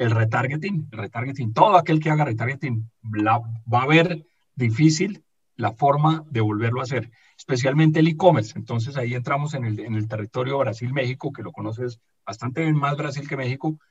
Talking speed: 175 wpm